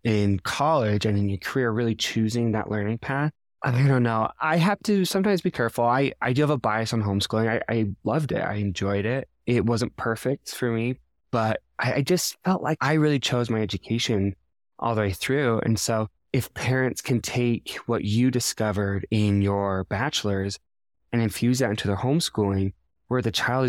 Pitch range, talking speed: 105-130 Hz, 195 wpm